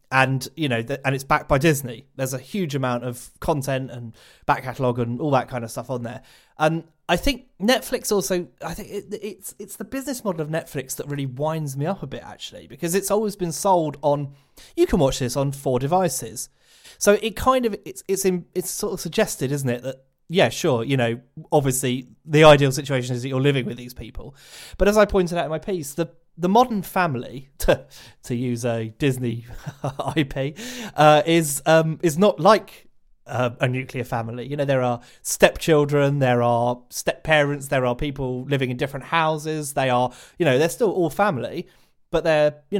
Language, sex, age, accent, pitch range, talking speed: English, male, 30-49, British, 130-170 Hz, 205 wpm